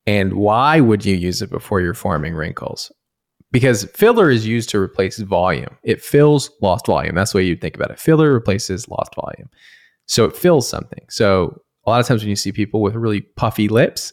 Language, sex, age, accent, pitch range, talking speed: English, male, 20-39, American, 100-130 Hz, 210 wpm